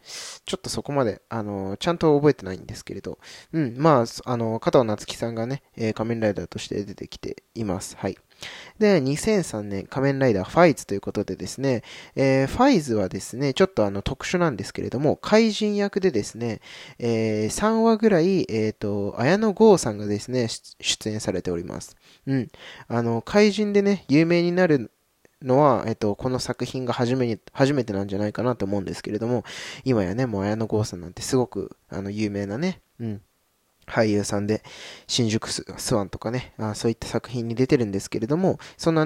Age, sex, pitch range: 20-39, male, 105-150 Hz